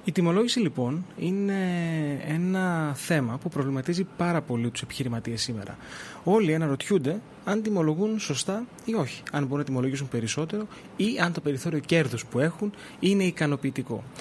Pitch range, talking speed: 130-185 Hz, 145 wpm